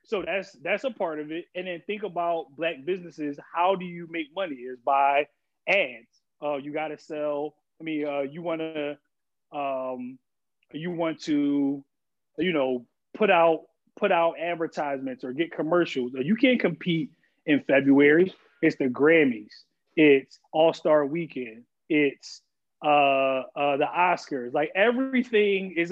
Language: English